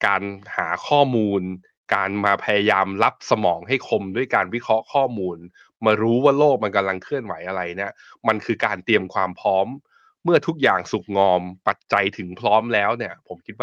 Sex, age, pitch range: male, 20-39, 95-120 Hz